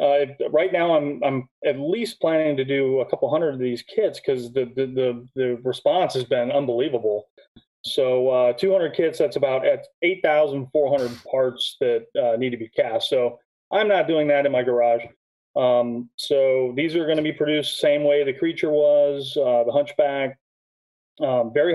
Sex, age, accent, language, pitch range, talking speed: male, 30-49, American, English, 120-150 Hz, 195 wpm